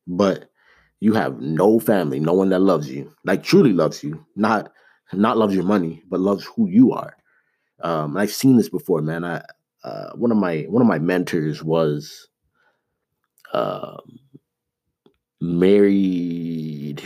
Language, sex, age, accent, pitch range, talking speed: English, male, 30-49, American, 80-100 Hz, 150 wpm